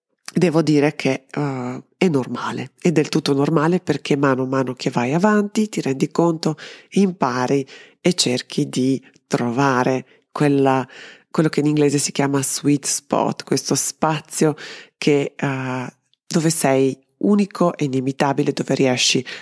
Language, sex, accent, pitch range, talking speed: Italian, female, native, 130-160 Hz, 140 wpm